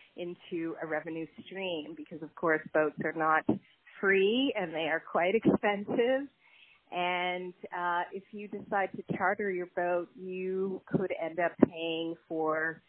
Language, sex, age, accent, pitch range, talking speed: English, female, 30-49, American, 155-195 Hz, 145 wpm